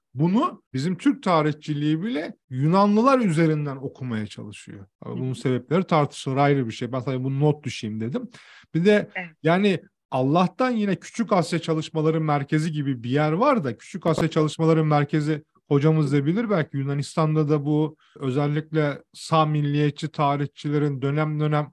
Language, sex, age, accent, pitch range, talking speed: Turkish, male, 30-49, native, 145-175 Hz, 140 wpm